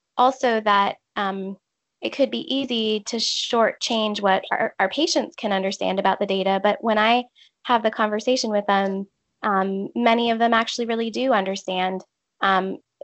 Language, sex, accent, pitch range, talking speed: English, female, American, 195-235 Hz, 160 wpm